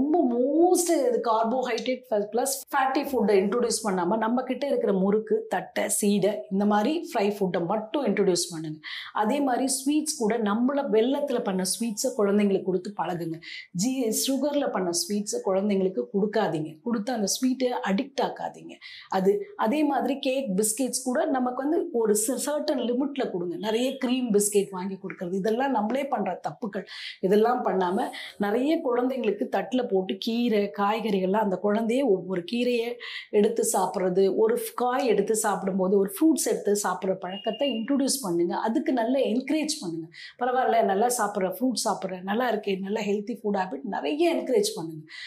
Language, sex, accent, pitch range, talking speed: Tamil, female, native, 195-260 Hz, 80 wpm